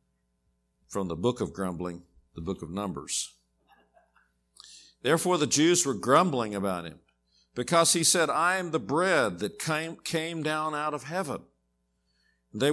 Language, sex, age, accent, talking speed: English, male, 50-69, American, 145 wpm